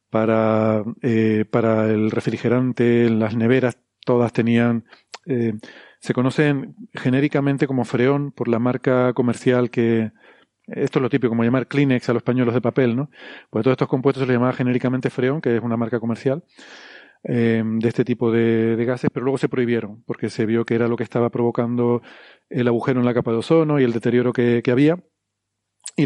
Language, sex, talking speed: Spanish, male, 185 wpm